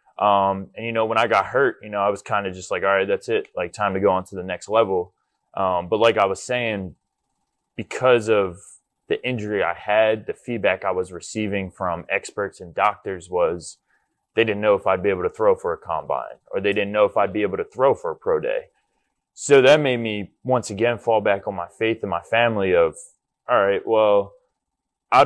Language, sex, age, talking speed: English, male, 20-39, 230 wpm